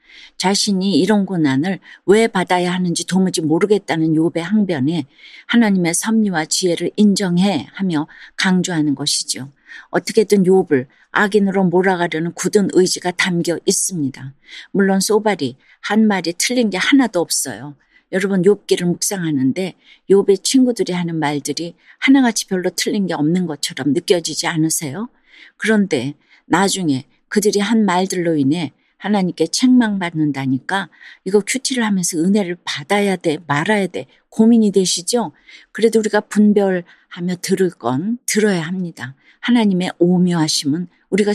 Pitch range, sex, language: 160-205 Hz, female, Korean